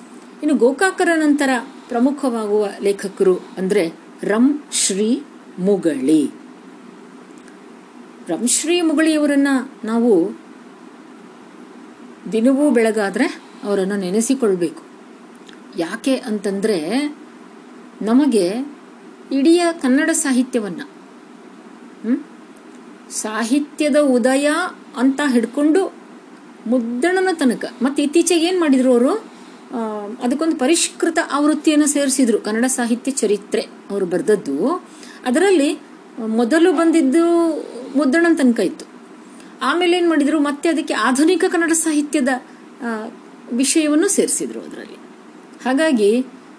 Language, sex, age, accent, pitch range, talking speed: Kannada, female, 50-69, native, 240-310 Hz, 75 wpm